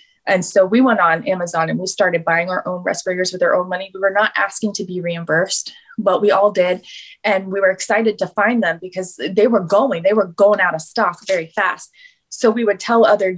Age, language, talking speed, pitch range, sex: 20-39, English, 230 wpm, 185-215 Hz, female